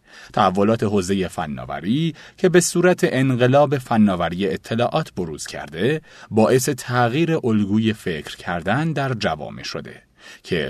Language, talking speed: Persian, 110 wpm